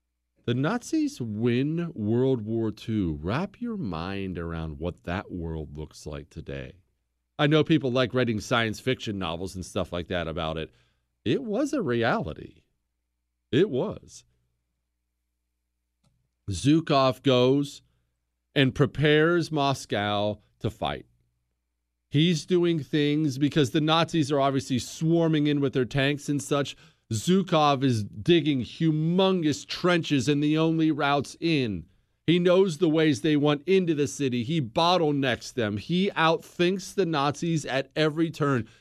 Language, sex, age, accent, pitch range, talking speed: English, male, 40-59, American, 105-170 Hz, 135 wpm